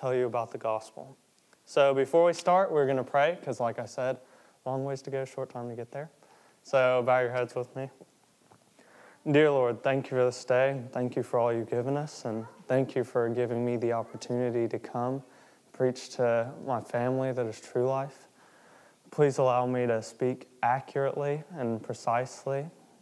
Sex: male